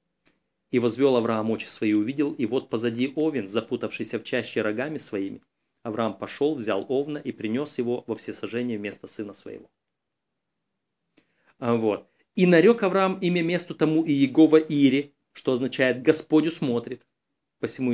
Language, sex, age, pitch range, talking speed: Russian, male, 30-49, 120-160 Hz, 140 wpm